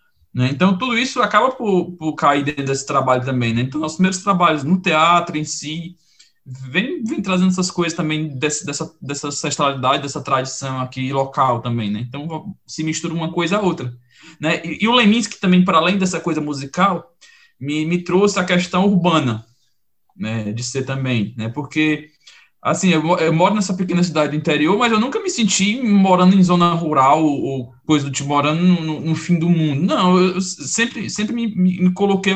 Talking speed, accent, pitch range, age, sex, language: 185 wpm, Brazilian, 150-190 Hz, 20-39, male, Portuguese